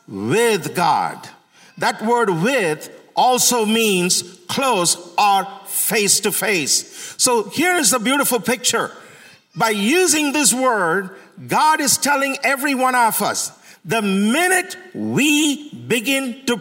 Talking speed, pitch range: 125 wpm, 220-290 Hz